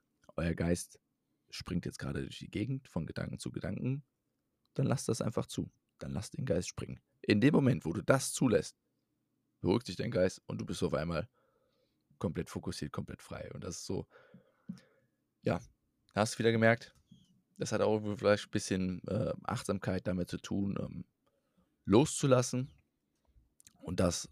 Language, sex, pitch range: German, male, 90-115 Hz